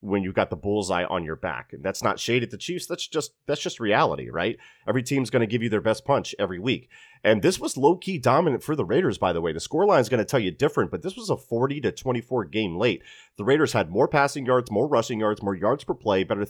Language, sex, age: English, male, 30-49